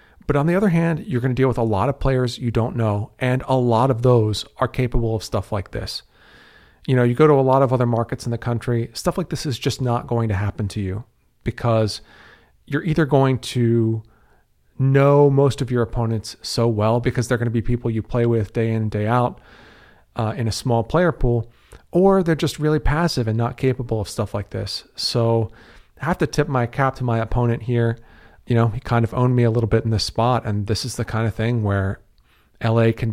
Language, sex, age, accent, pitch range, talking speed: English, male, 40-59, American, 110-130 Hz, 230 wpm